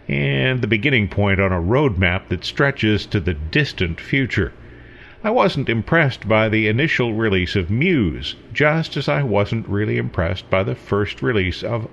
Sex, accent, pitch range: male, American, 100-130 Hz